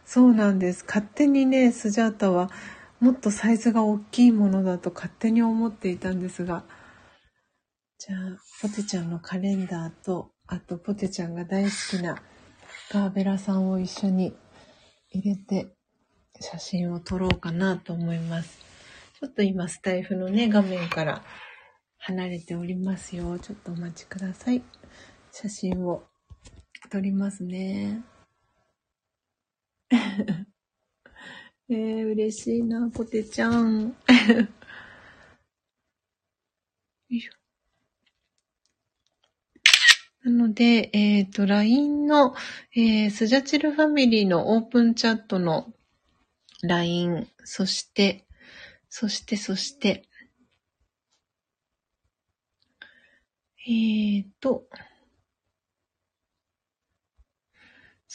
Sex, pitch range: female, 180-230 Hz